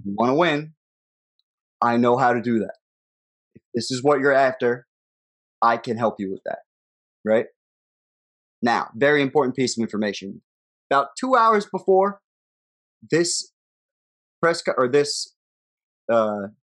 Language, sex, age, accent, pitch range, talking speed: English, male, 20-39, American, 115-150 Hz, 135 wpm